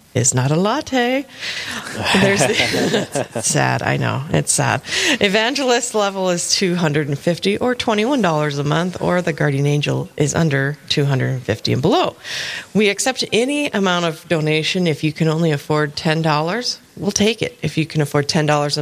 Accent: American